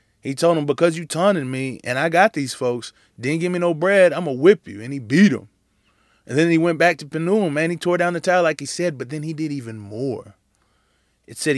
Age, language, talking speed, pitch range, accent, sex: 20-39, English, 260 wpm, 115-155 Hz, American, male